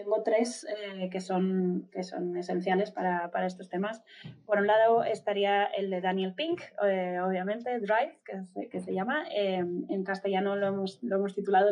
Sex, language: female, Spanish